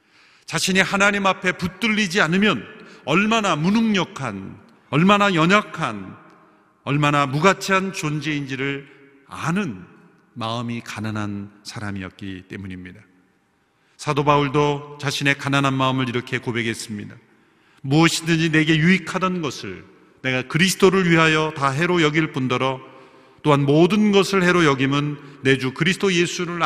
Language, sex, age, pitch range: Korean, male, 40-59, 120-175 Hz